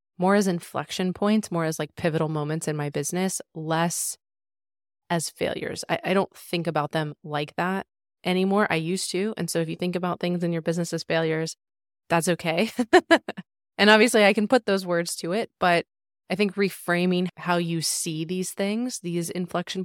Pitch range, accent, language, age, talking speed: 155-190 Hz, American, English, 20-39, 185 wpm